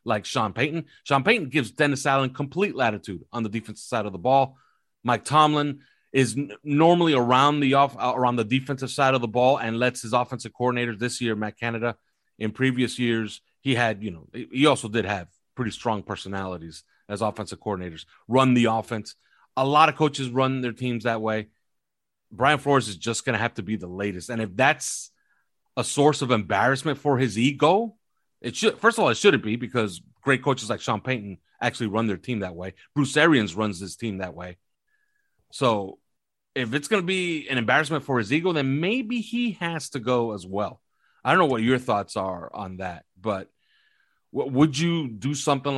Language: English